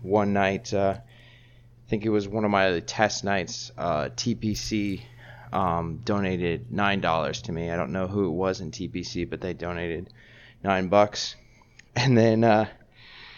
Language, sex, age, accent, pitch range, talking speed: English, male, 20-39, American, 95-120 Hz, 165 wpm